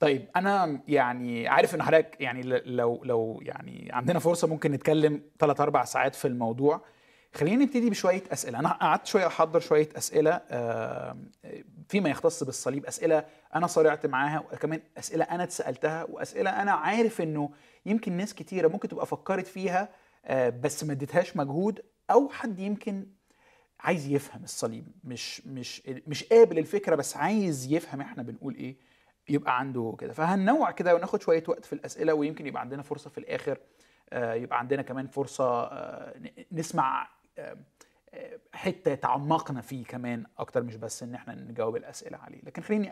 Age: 30-49